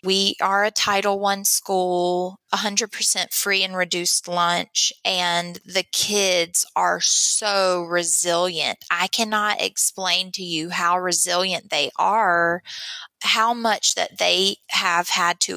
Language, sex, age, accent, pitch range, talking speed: English, female, 20-39, American, 175-200 Hz, 125 wpm